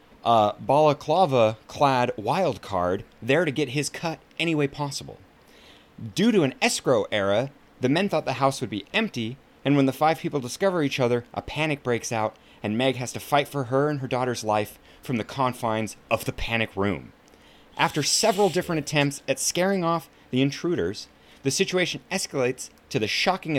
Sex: male